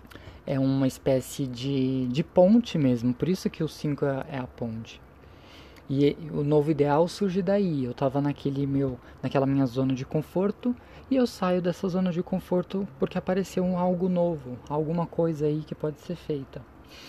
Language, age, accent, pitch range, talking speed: Portuguese, 20-39, Brazilian, 130-160 Hz, 165 wpm